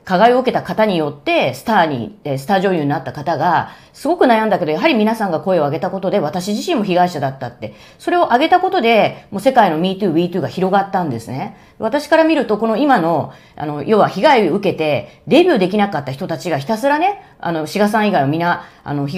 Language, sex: Japanese, female